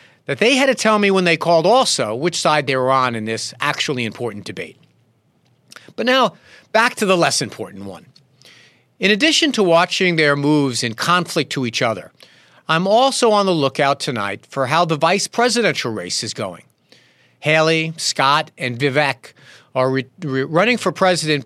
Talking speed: 170 wpm